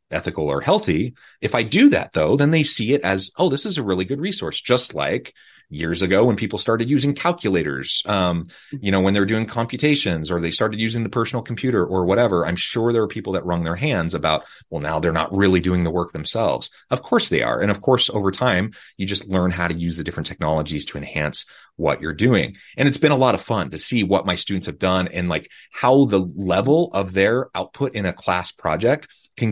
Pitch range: 85-110 Hz